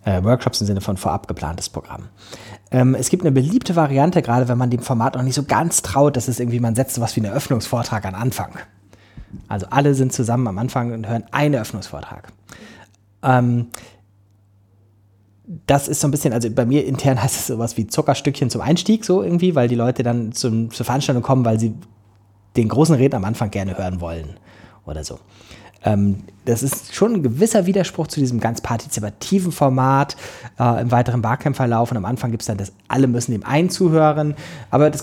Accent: German